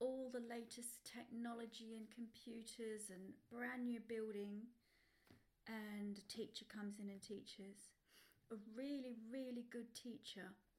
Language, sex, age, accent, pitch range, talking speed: English, female, 40-59, British, 200-230 Hz, 120 wpm